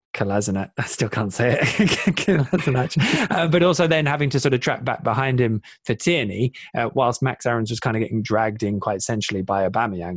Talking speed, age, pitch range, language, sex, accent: 195 wpm, 20-39, 95-120 Hz, English, male, British